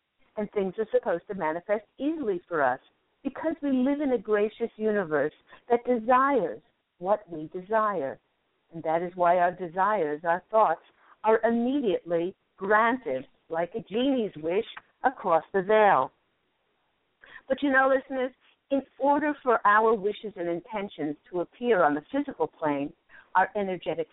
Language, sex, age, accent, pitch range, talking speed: English, female, 50-69, American, 175-230 Hz, 145 wpm